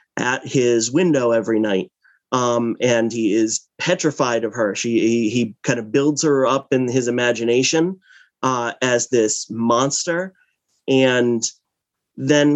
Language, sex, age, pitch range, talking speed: English, male, 30-49, 120-145 Hz, 140 wpm